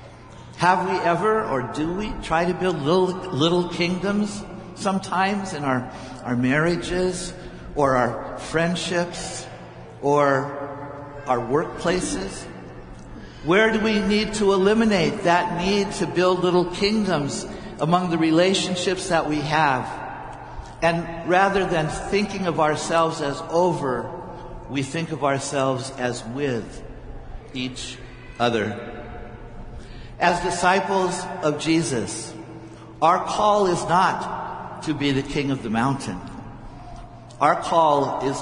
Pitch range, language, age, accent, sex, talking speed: 130-180 Hz, English, 60-79, American, male, 115 wpm